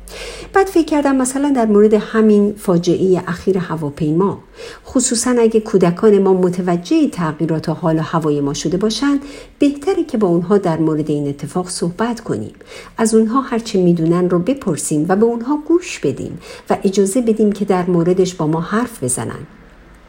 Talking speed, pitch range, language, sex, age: 160 wpm, 165-255 Hz, Persian, female, 50-69